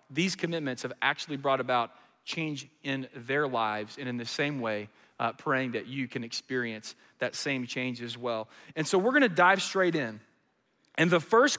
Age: 40-59